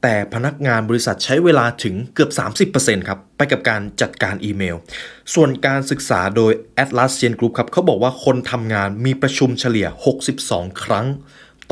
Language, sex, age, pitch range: Thai, male, 20-39, 110-145 Hz